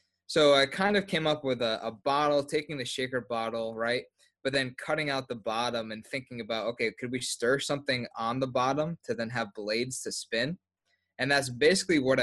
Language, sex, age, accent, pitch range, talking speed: English, male, 20-39, American, 115-135 Hz, 205 wpm